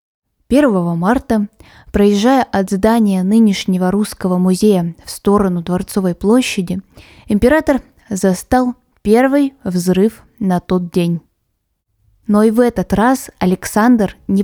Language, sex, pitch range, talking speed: Russian, female, 185-230 Hz, 110 wpm